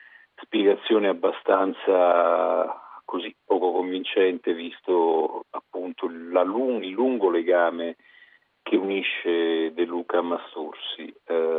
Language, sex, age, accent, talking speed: Italian, male, 50-69, native, 85 wpm